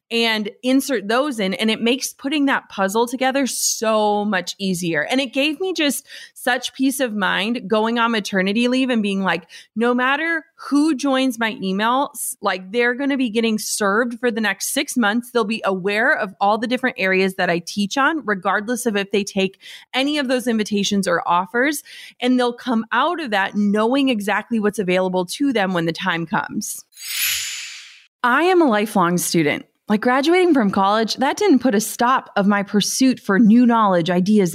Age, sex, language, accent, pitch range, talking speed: 20-39, female, English, American, 195-260 Hz, 190 wpm